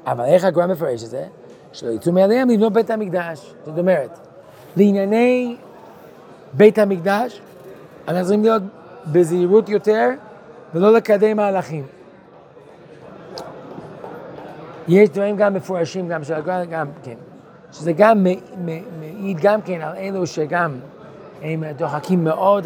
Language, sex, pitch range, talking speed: Hebrew, male, 150-190 Hz, 120 wpm